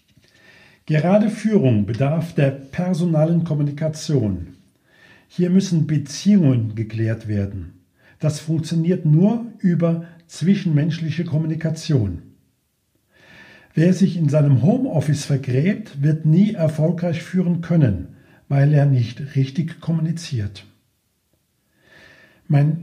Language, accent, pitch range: German, German, 135-180 Hz